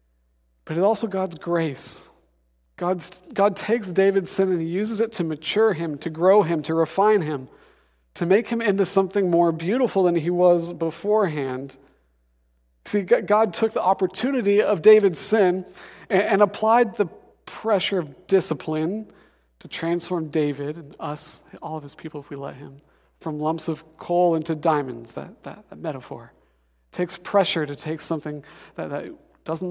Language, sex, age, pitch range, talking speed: English, male, 40-59, 145-195 Hz, 165 wpm